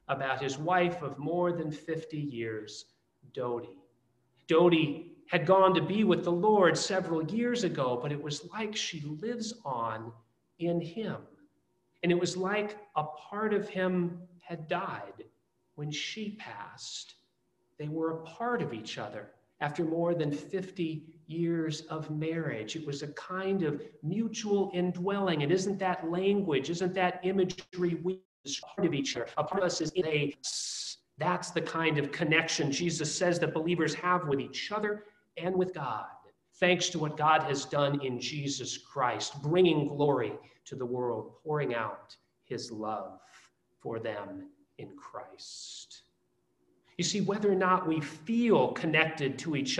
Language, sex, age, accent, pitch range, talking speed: English, male, 40-59, American, 150-185 Hz, 155 wpm